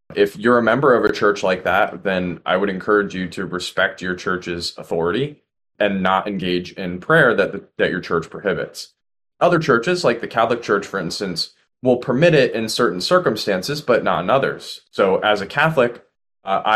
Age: 20-39